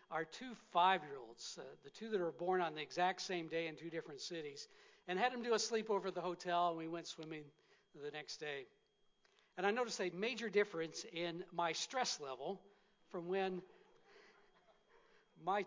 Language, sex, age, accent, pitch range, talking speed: English, male, 60-79, American, 175-210 Hz, 175 wpm